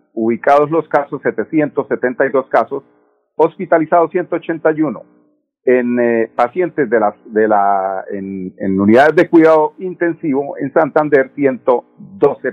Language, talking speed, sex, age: Spanish, 110 wpm, male, 50-69